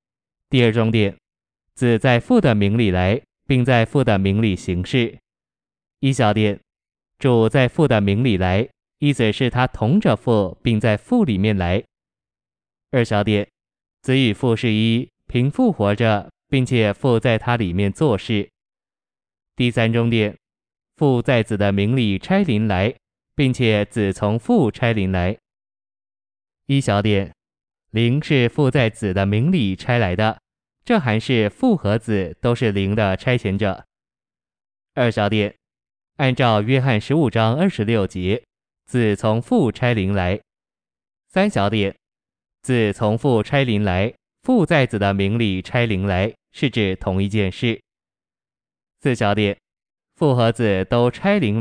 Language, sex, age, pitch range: Chinese, male, 20-39, 100-125 Hz